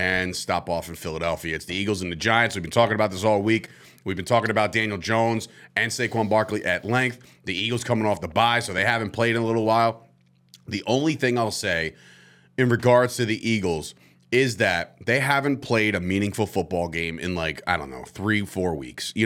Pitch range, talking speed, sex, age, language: 95-120 Hz, 220 wpm, male, 30-49, English